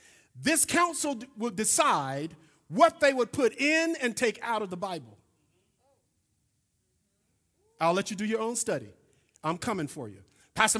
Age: 50-69